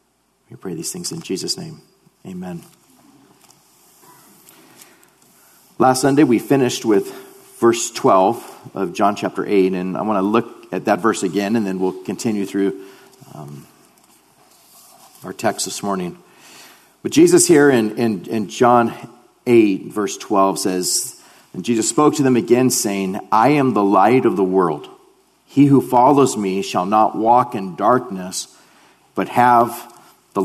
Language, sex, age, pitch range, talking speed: English, male, 40-59, 95-130 Hz, 150 wpm